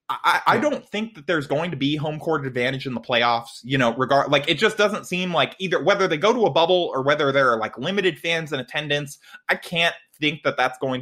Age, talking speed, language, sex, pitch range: 20-39, 250 wpm, English, male, 130-175 Hz